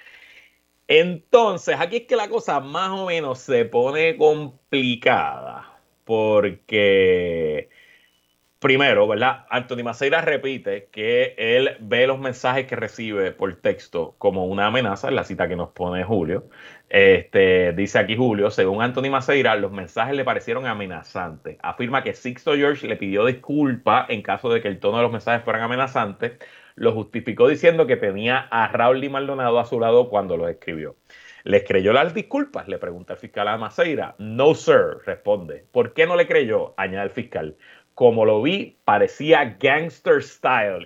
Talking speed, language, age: 160 wpm, Spanish, 30-49